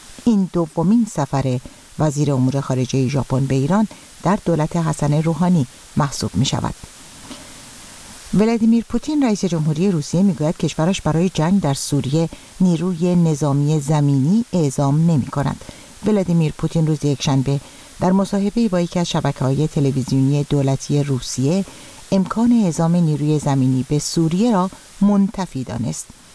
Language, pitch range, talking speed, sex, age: Persian, 140-185 Hz, 125 wpm, female, 50-69